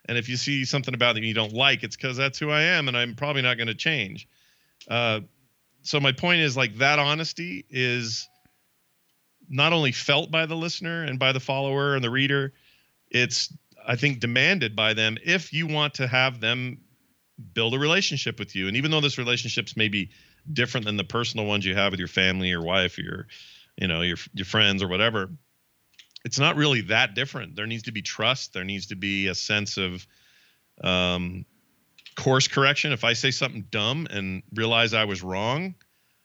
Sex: male